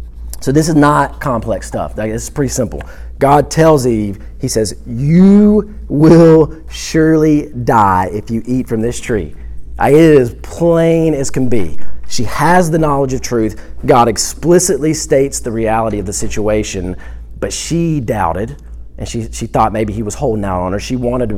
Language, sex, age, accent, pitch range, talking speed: English, male, 40-59, American, 85-125 Hz, 170 wpm